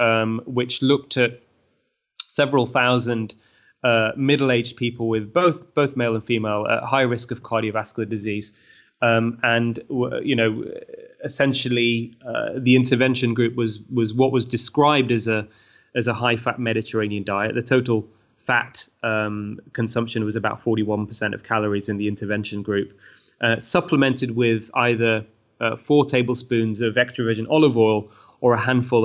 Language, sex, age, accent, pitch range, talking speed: English, male, 20-39, British, 110-125 Hz, 145 wpm